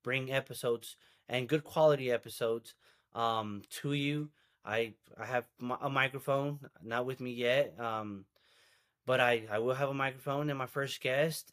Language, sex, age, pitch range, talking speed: English, male, 20-39, 120-150 Hz, 160 wpm